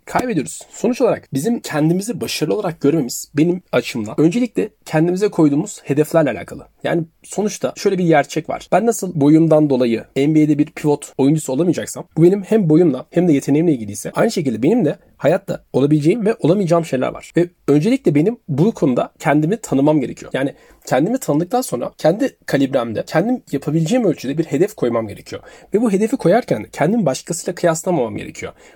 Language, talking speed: Turkish, 160 wpm